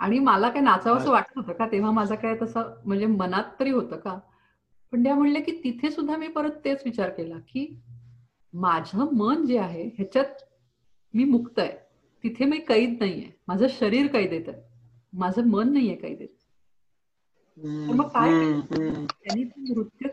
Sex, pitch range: female, 185-250 Hz